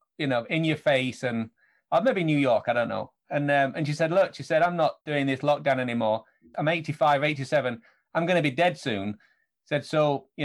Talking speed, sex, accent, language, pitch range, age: 230 wpm, male, British, English, 130-155 Hz, 30-49